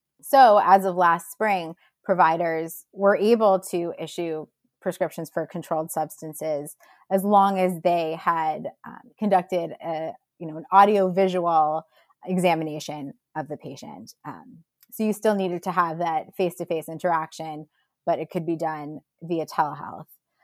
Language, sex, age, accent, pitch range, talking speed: English, female, 20-39, American, 160-190 Hz, 140 wpm